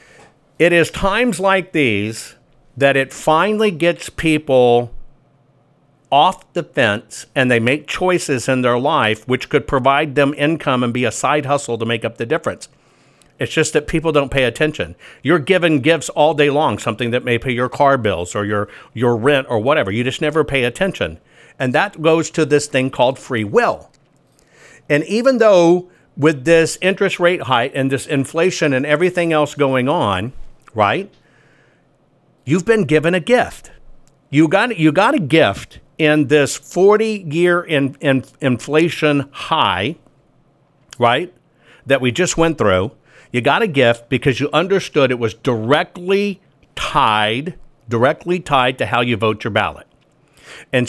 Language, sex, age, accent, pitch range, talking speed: English, male, 50-69, American, 130-170 Hz, 160 wpm